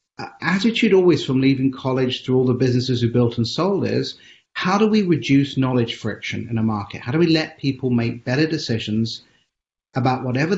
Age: 40-59